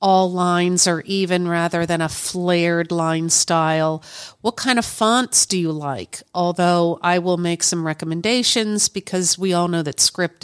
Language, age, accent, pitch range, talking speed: English, 50-69, American, 160-195 Hz, 165 wpm